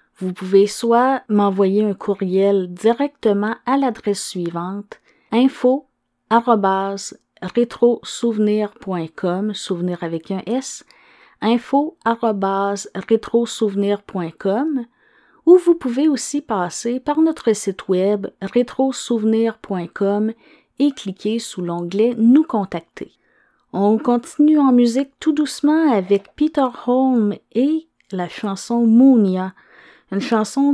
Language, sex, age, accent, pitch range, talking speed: French, female, 30-49, Canadian, 195-255 Hz, 90 wpm